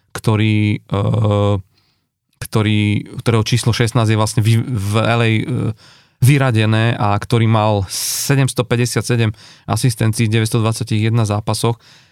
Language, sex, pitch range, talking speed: Slovak, male, 110-125 Hz, 90 wpm